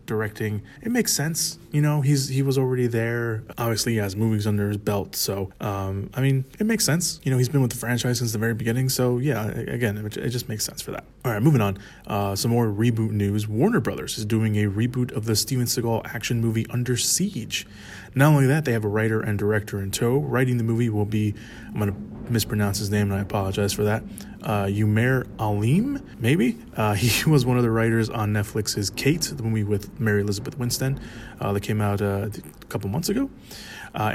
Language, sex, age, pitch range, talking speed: English, male, 20-39, 105-130 Hz, 220 wpm